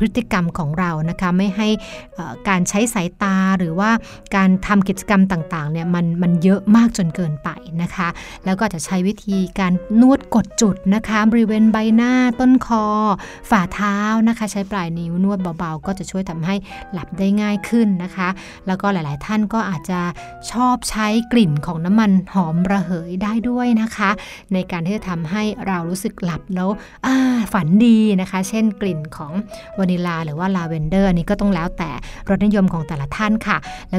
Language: Thai